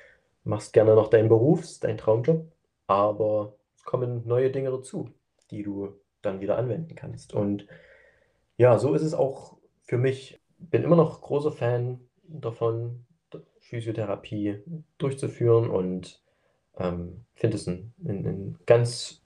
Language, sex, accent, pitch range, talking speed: German, male, German, 105-135 Hz, 130 wpm